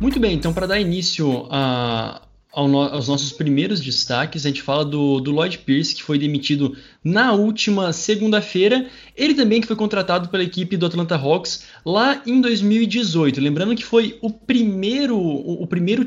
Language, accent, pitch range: Portuguese, Brazilian, 145-210 Hz